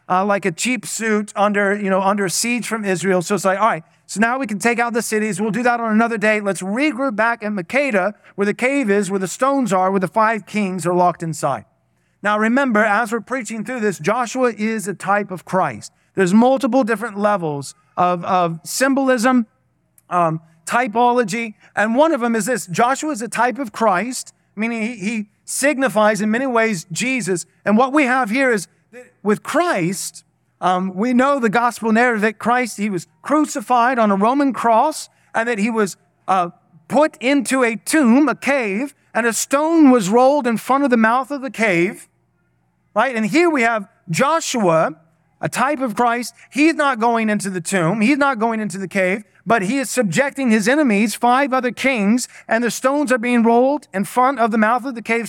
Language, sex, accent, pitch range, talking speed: English, male, American, 195-255 Hz, 200 wpm